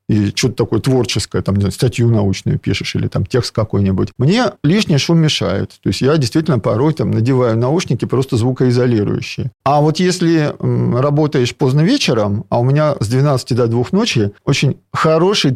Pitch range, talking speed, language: 120-160 Hz, 170 wpm, Russian